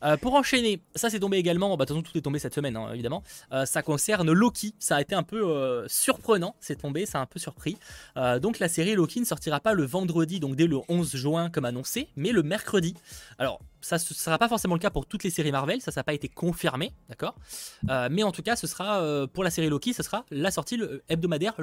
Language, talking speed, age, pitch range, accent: French, 260 wpm, 20-39, 130-175 Hz, French